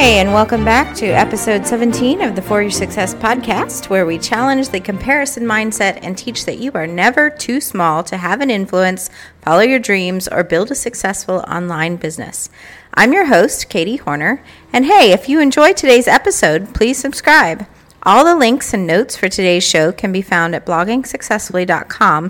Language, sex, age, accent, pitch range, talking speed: English, female, 40-59, American, 185-240 Hz, 180 wpm